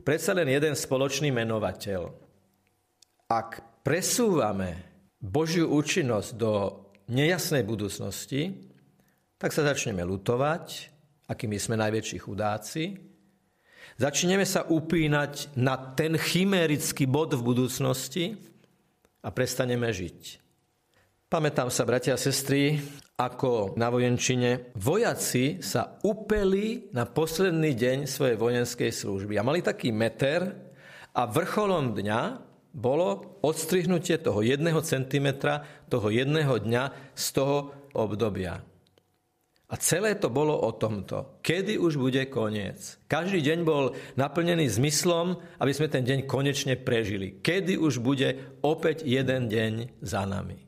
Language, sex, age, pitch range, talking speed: Slovak, male, 50-69, 115-155 Hz, 115 wpm